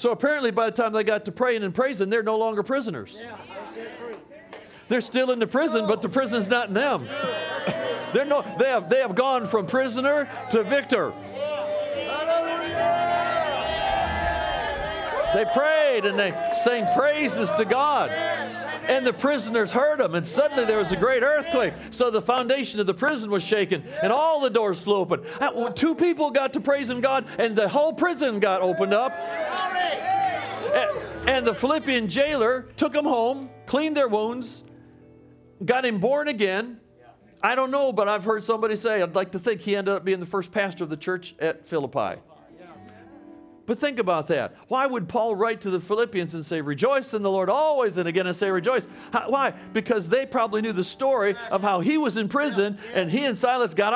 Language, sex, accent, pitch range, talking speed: English, male, American, 210-285 Hz, 180 wpm